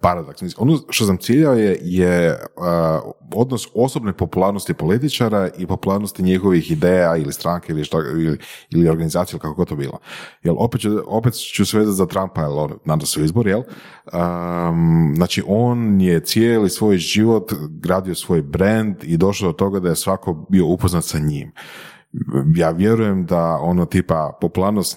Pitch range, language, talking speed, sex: 85-100 Hz, Croatian, 155 wpm, male